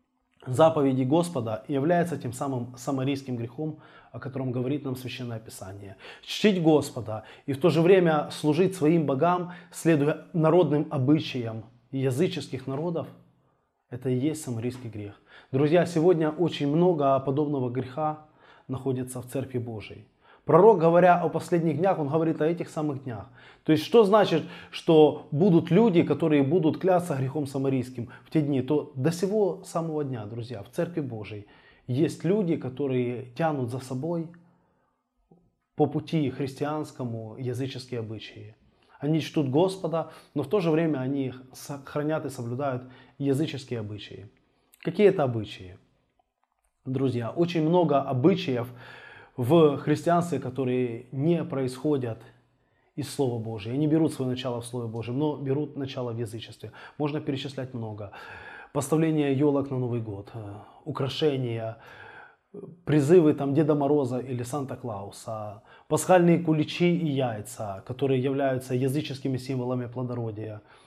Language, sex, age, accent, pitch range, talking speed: Russian, male, 20-39, native, 125-155 Hz, 130 wpm